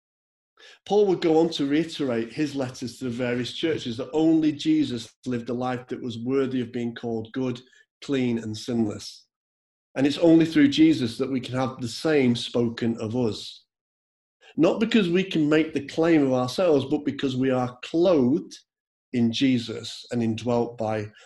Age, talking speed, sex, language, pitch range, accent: 40-59, 170 wpm, male, English, 115-155 Hz, British